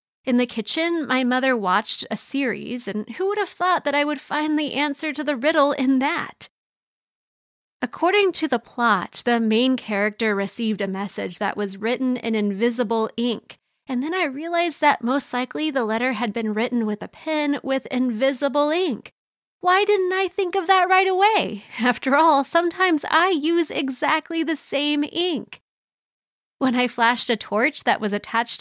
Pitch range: 220-295 Hz